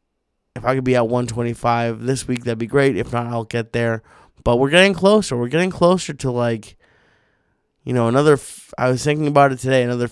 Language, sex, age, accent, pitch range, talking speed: English, male, 20-39, American, 120-135 Hz, 210 wpm